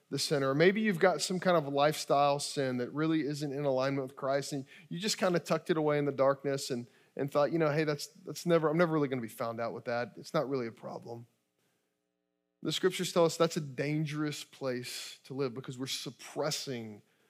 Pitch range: 120-160 Hz